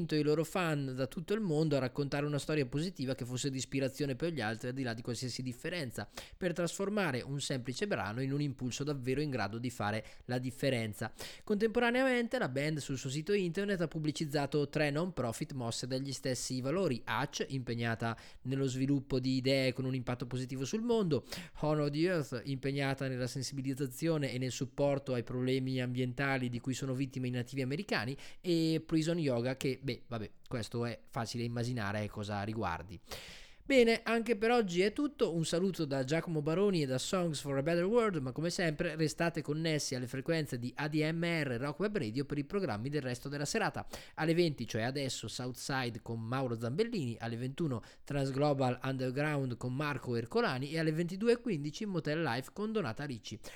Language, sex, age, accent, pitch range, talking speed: Italian, male, 20-39, native, 125-160 Hz, 180 wpm